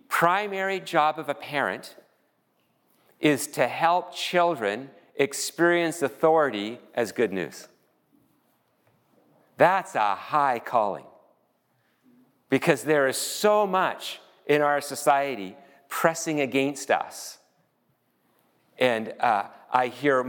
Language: English